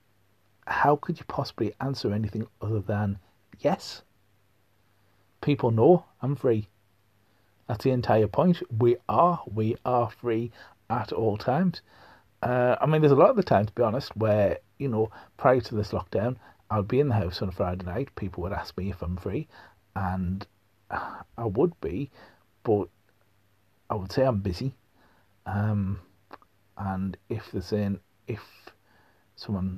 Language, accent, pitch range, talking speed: English, British, 95-115 Hz, 155 wpm